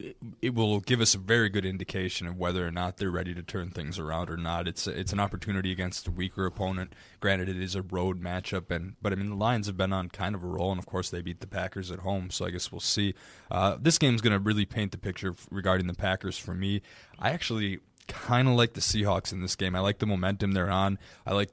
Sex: male